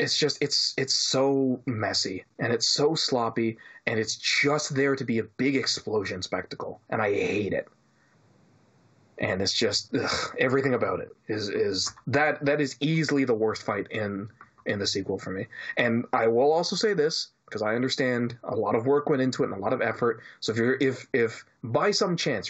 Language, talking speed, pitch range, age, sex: English, 200 wpm, 115-150 Hz, 30-49, male